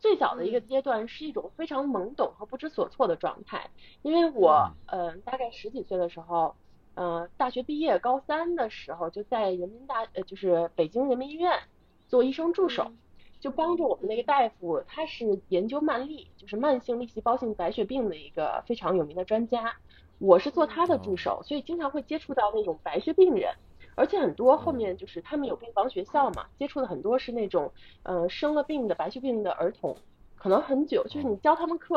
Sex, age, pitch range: female, 20-39, 195-300 Hz